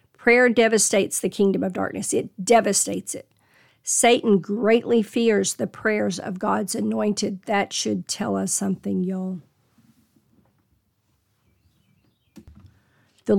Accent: American